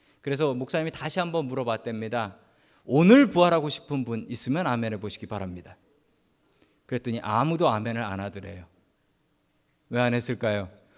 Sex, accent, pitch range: male, native, 125-195 Hz